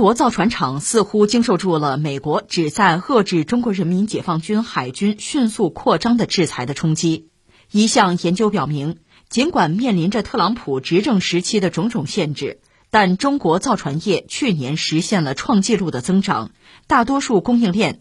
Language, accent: Chinese, native